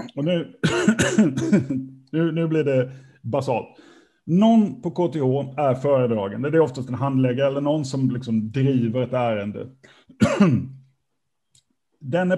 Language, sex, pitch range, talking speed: Swedish, male, 120-155 Hz, 115 wpm